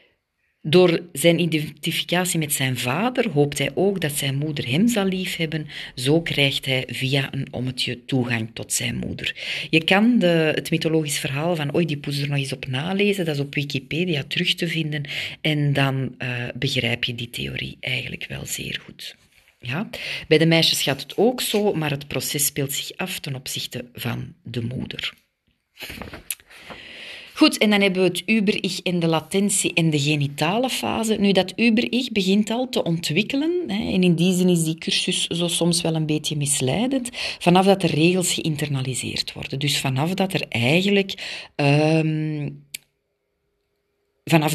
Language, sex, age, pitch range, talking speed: Dutch, female, 40-59, 135-180 Hz, 165 wpm